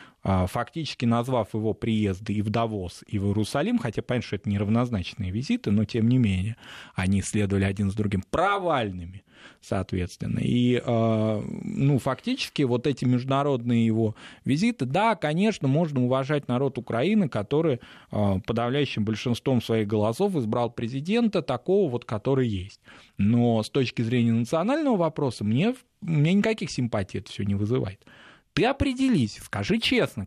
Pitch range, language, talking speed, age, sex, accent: 110-155 Hz, Russian, 140 wpm, 20-39, male, native